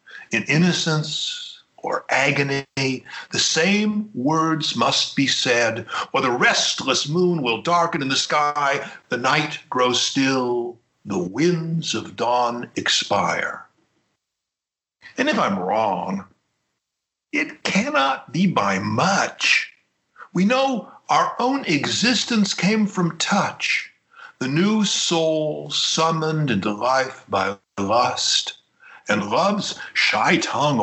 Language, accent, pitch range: English, American, 130-180 Hz